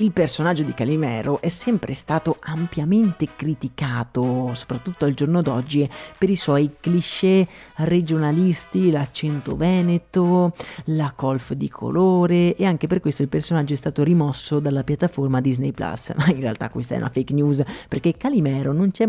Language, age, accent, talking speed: Italian, 30-49, native, 155 wpm